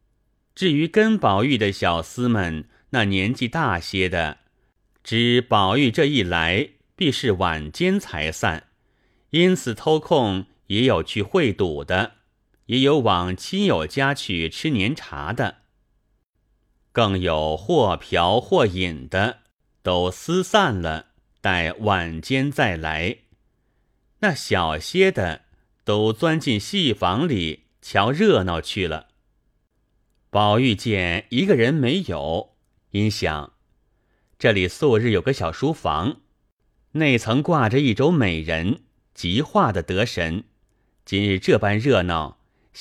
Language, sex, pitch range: Chinese, male, 90-130 Hz